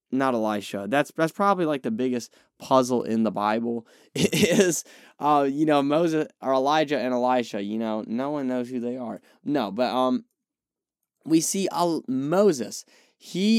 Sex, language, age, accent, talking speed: male, English, 10-29, American, 165 wpm